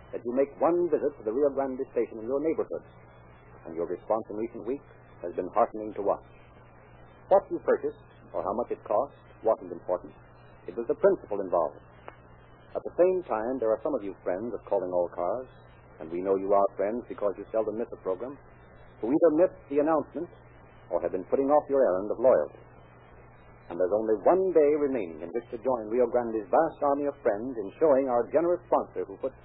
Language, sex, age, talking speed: English, male, 60-79, 210 wpm